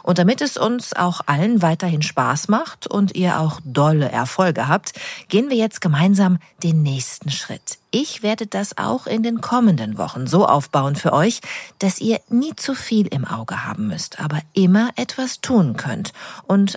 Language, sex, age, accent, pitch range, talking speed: German, female, 40-59, German, 150-215 Hz, 175 wpm